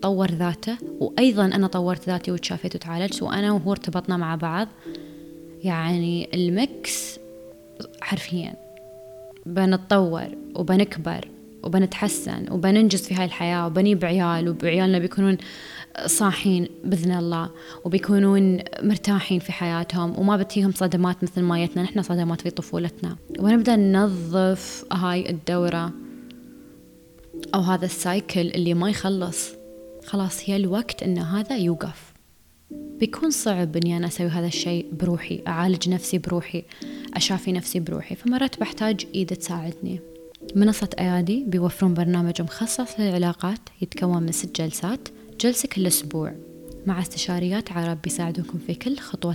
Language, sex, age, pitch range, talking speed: Arabic, female, 20-39, 170-200 Hz, 120 wpm